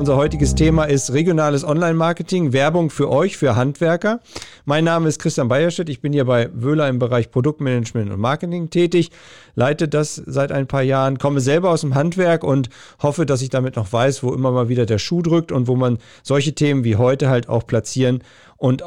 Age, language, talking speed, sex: 40-59, German, 200 wpm, male